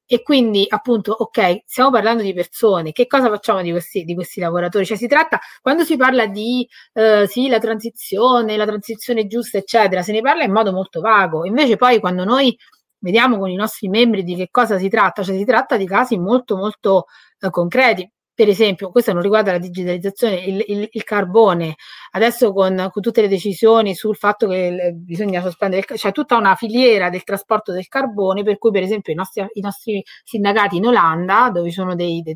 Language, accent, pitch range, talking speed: Italian, native, 185-235 Hz, 200 wpm